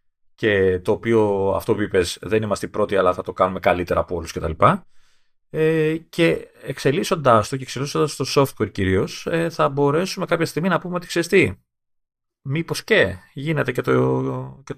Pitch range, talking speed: 105-150 Hz, 150 wpm